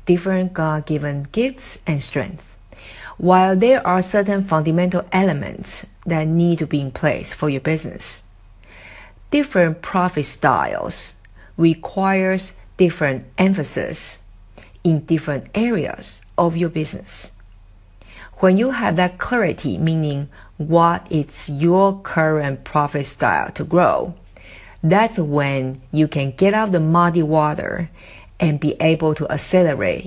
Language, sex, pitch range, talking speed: English, female, 135-185 Hz, 120 wpm